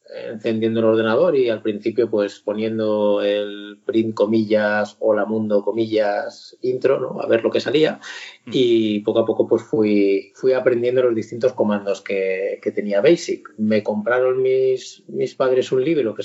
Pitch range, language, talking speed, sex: 105-135 Hz, Spanish, 165 wpm, male